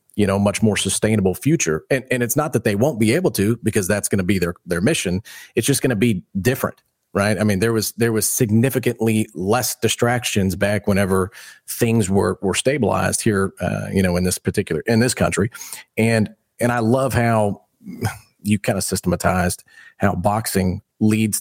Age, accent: 40-59, American